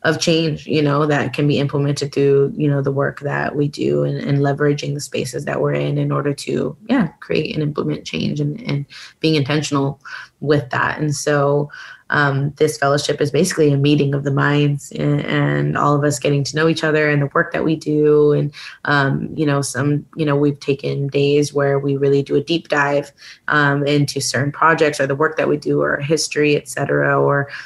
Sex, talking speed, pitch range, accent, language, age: female, 215 wpm, 140-155 Hz, American, English, 20-39